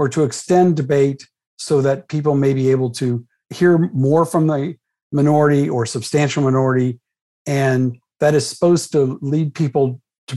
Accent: American